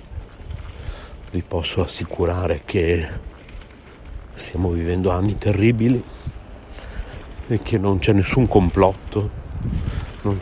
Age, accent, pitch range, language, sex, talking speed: 60-79, native, 90-105 Hz, Italian, male, 85 wpm